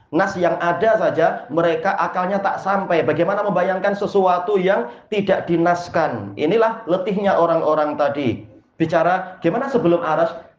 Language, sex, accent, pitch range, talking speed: Indonesian, male, native, 180-225 Hz, 125 wpm